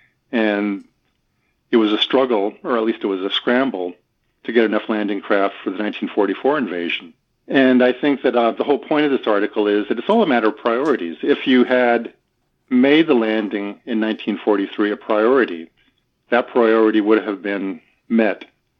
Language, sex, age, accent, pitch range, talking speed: English, male, 50-69, American, 100-115 Hz, 180 wpm